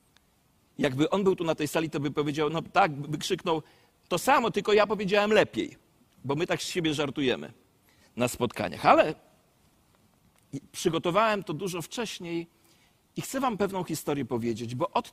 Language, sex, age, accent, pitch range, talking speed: Polish, male, 40-59, native, 160-220 Hz, 165 wpm